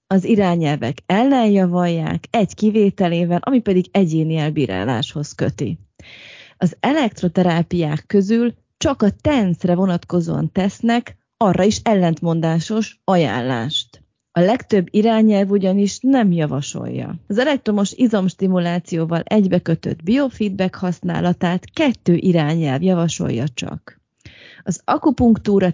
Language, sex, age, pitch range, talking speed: Hungarian, female, 30-49, 165-210 Hz, 95 wpm